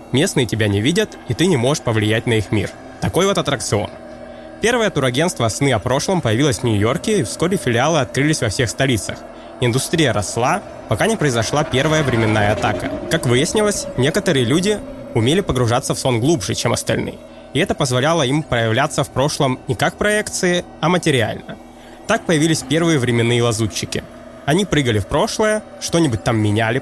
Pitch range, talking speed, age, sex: 120-165 Hz, 165 wpm, 20-39, male